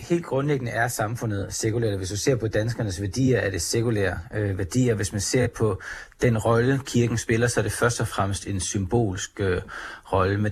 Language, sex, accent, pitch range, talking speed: Danish, male, native, 100-120 Hz, 200 wpm